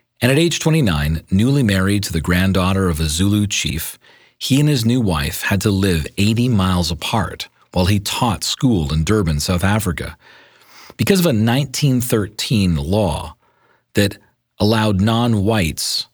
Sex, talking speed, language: male, 150 wpm, English